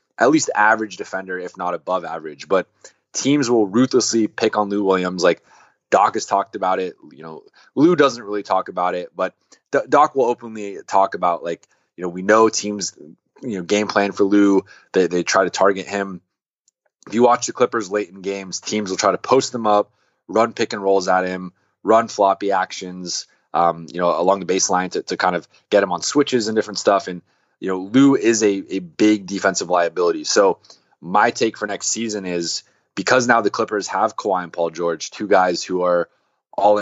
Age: 20-39